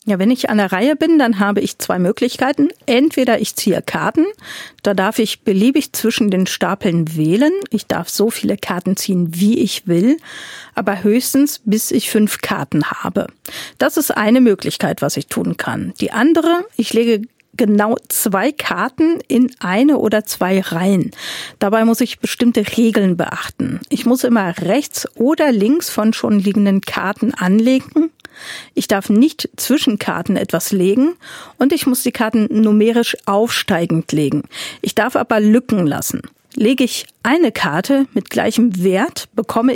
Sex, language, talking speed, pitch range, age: female, German, 160 wpm, 200-260 Hz, 50-69